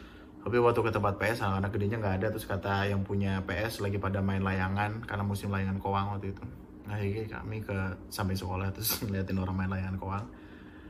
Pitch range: 100-125 Hz